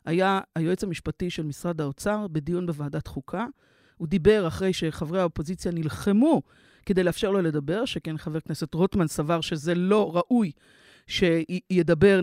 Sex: female